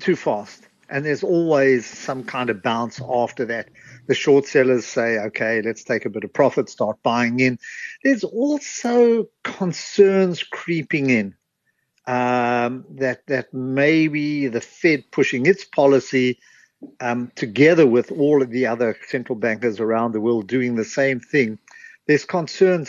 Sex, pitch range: male, 115-150 Hz